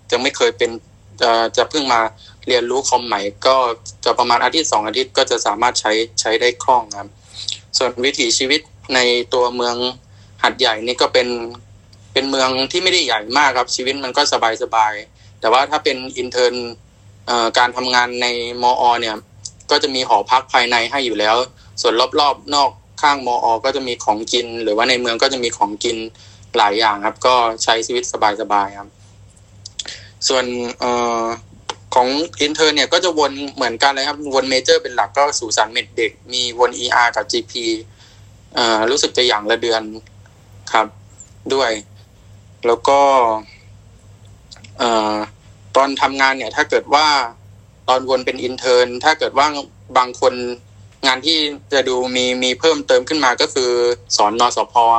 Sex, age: male, 20-39